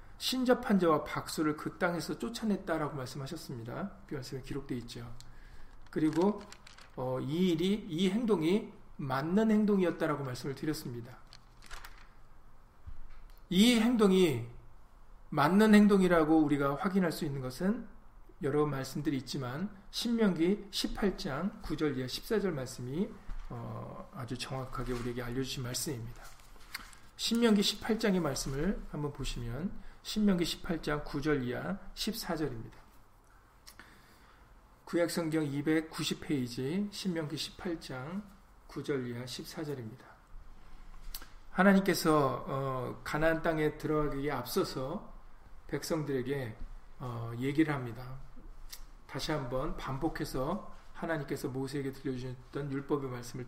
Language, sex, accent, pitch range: Korean, male, native, 130-185 Hz